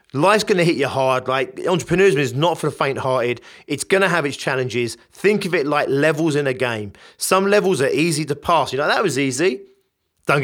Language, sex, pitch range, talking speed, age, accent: English, male, 130-170 Hz, 230 wpm, 30-49, British